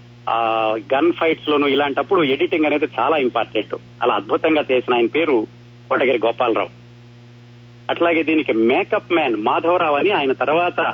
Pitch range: 120-155 Hz